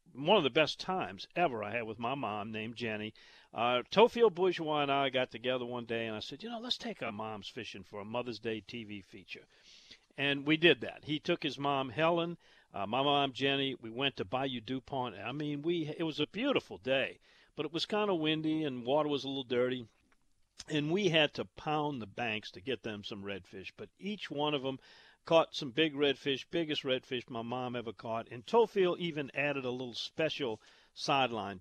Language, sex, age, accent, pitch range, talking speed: English, male, 50-69, American, 120-155 Hz, 210 wpm